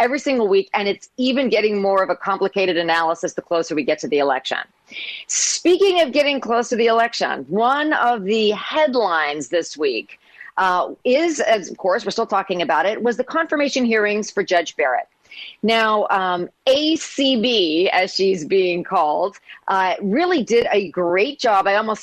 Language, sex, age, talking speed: English, female, 40-59, 170 wpm